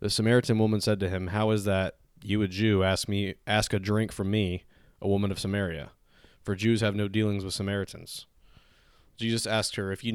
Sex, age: male, 20-39